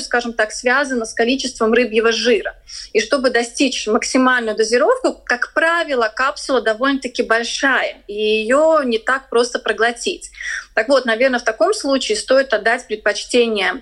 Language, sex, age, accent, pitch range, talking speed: Russian, female, 30-49, native, 220-285 Hz, 140 wpm